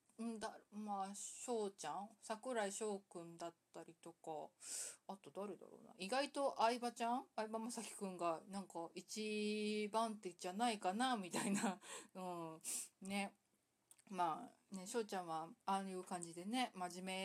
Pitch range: 190-245 Hz